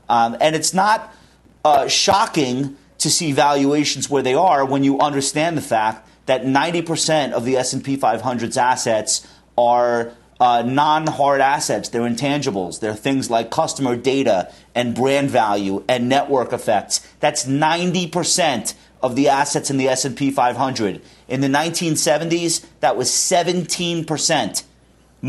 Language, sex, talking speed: English, male, 135 wpm